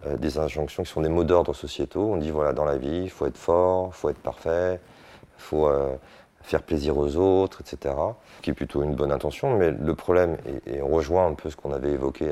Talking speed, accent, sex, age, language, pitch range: 250 wpm, French, male, 30-49, French, 75-90 Hz